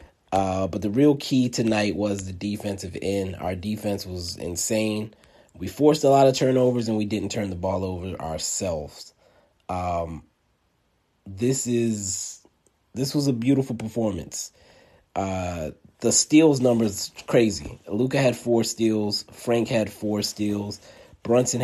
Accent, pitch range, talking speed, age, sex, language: American, 100-120 Hz, 140 wpm, 30-49, male, English